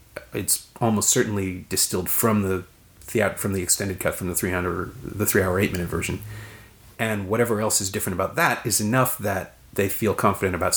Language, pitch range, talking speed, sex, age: English, 95-120 Hz, 175 wpm, male, 40-59